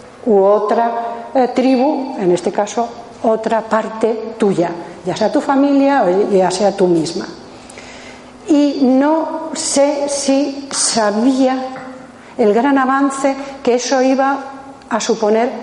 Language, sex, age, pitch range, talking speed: Spanish, female, 40-59, 220-275 Hz, 125 wpm